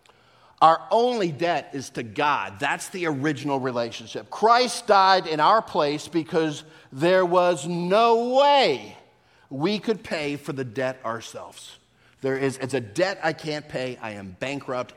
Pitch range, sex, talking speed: 135-190 Hz, male, 150 wpm